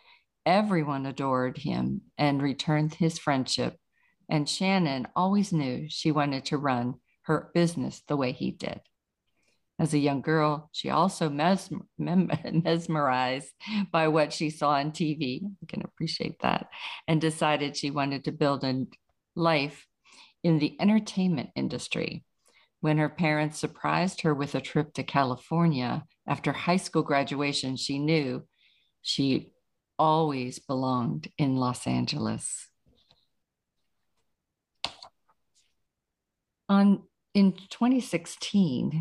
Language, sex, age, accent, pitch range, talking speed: English, female, 50-69, American, 140-170 Hz, 115 wpm